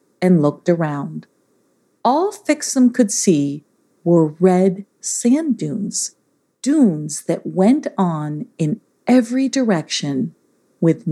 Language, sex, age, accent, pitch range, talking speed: English, female, 50-69, American, 170-230 Hz, 105 wpm